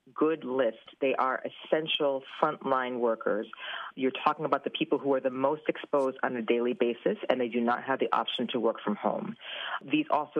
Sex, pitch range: female, 125-155 Hz